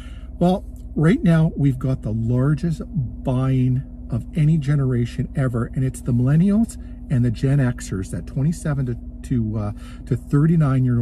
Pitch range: 110-135 Hz